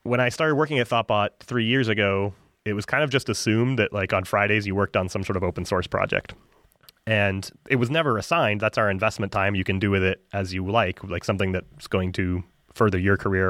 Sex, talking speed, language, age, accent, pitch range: male, 235 wpm, English, 30-49, American, 95-110 Hz